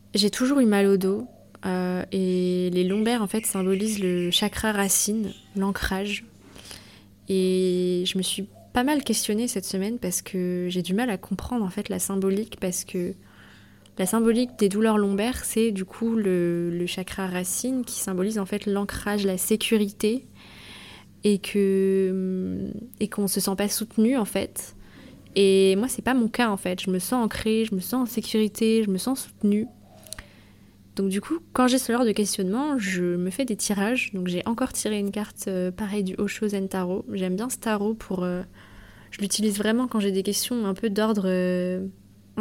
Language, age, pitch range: French, 20-39, 185-215 Hz